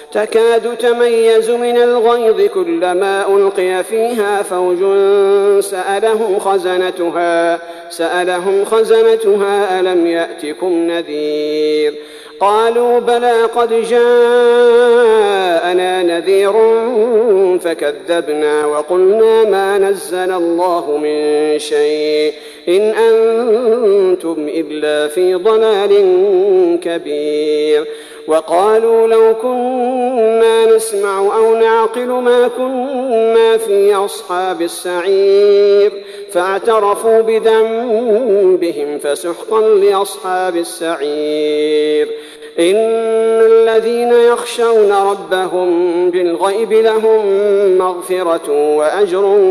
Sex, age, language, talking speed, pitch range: male, 50-69, Arabic, 70 wpm, 170-230 Hz